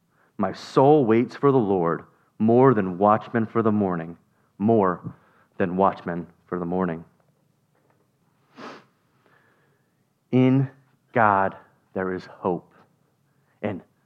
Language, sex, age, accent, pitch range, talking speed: English, male, 40-59, American, 100-125 Hz, 100 wpm